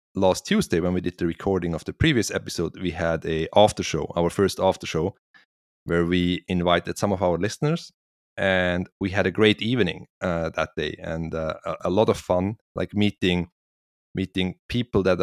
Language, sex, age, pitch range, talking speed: English, male, 30-49, 85-95 Hz, 185 wpm